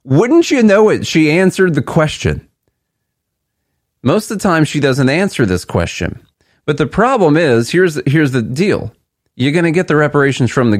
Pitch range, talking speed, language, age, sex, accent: 100-140 Hz, 185 wpm, English, 40-59, male, American